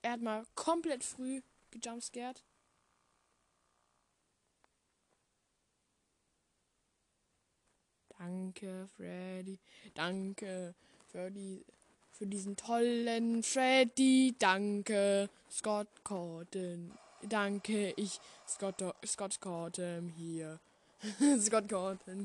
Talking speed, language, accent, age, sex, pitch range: 75 wpm, German, German, 10-29, female, 190-235 Hz